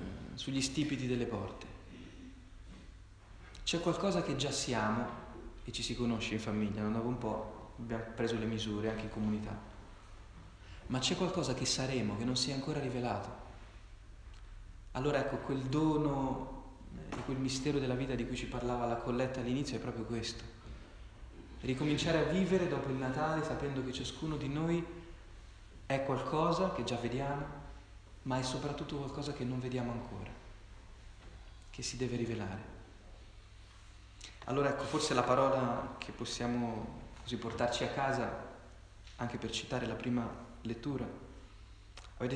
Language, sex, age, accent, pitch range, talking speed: Italian, male, 30-49, native, 105-135 Hz, 145 wpm